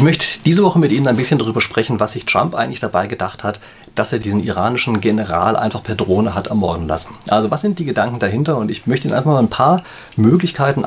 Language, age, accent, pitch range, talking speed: German, 30-49, German, 110-155 Hz, 240 wpm